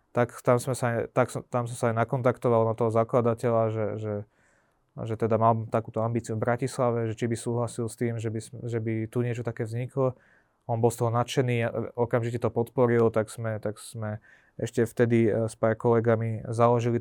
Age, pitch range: 20-39, 110-125 Hz